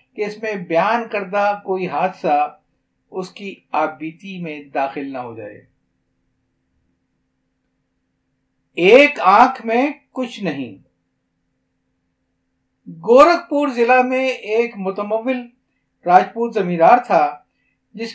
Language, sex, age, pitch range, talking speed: Urdu, male, 50-69, 155-230 Hz, 95 wpm